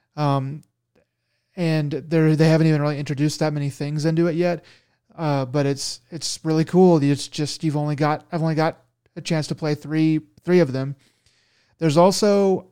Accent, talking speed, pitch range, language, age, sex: American, 180 wpm, 140-165 Hz, English, 30-49, male